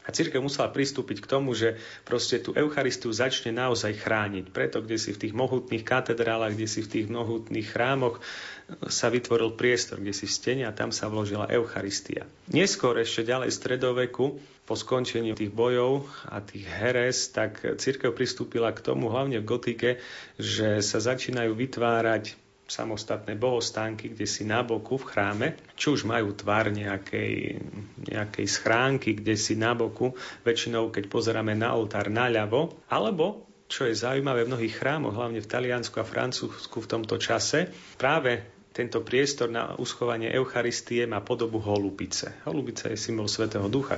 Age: 40-59